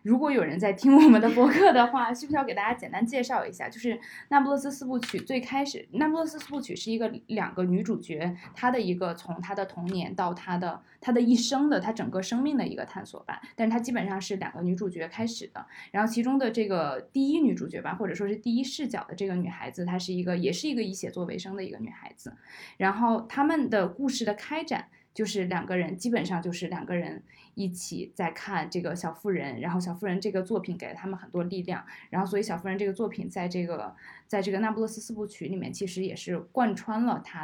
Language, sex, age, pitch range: Chinese, female, 20-39, 185-245 Hz